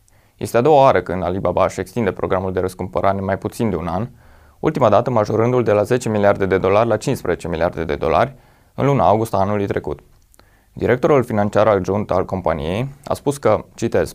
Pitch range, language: 95-115 Hz, Romanian